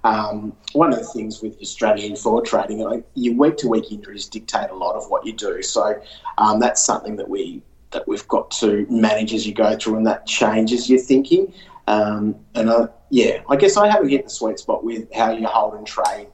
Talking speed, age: 215 wpm, 30-49